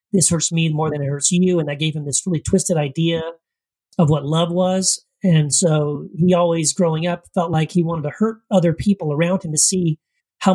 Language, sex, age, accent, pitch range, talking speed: English, male, 40-59, American, 160-200 Hz, 220 wpm